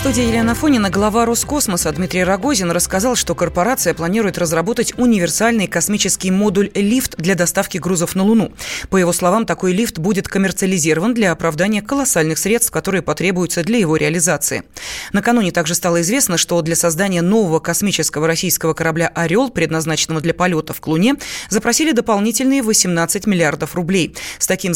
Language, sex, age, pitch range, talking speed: Russian, female, 20-39, 170-225 Hz, 150 wpm